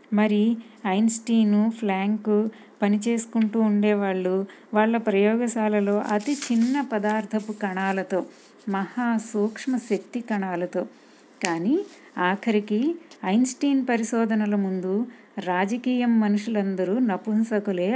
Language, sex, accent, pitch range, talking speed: Telugu, female, native, 190-230 Hz, 75 wpm